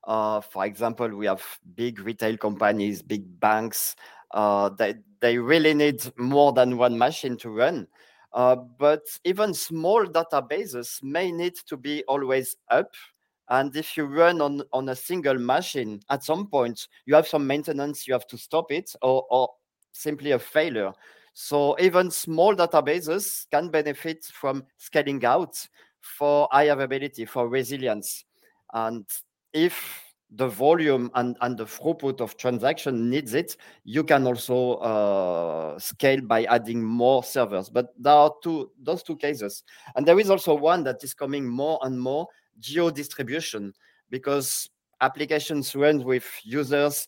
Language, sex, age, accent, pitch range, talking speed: Romanian, male, 40-59, French, 120-145 Hz, 150 wpm